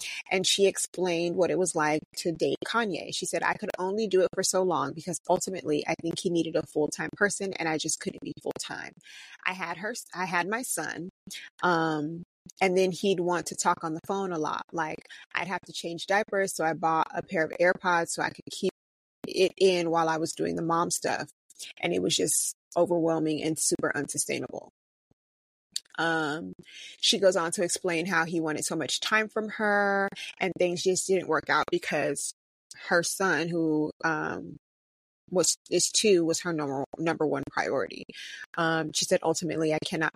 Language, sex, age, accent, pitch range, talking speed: English, female, 30-49, American, 160-185 Hz, 190 wpm